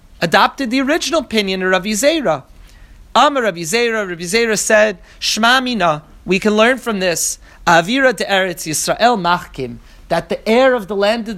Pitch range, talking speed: 175-225 Hz, 155 wpm